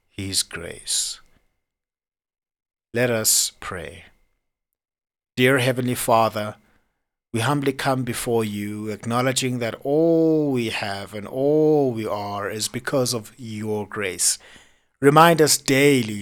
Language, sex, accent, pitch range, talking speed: English, male, South African, 105-130 Hz, 110 wpm